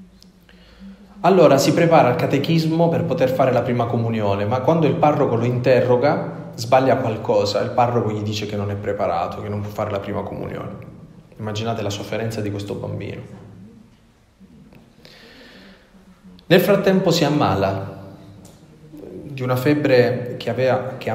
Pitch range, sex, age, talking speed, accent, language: 105-155 Hz, male, 30-49, 140 wpm, native, Italian